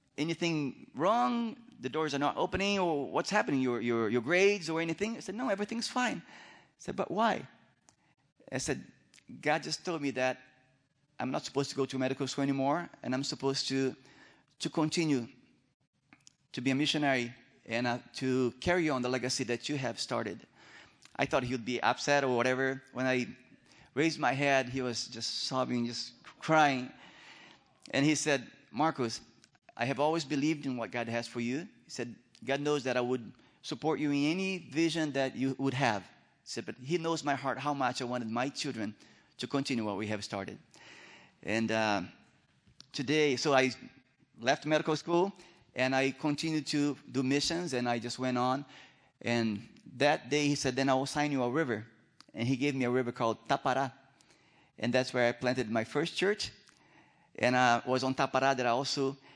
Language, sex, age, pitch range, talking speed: English, male, 30-49, 125-150 Hz, 190 wpm